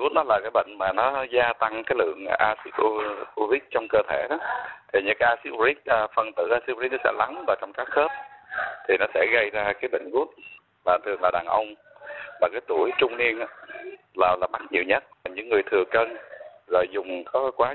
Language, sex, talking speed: Vietnamese, male, 215 wpm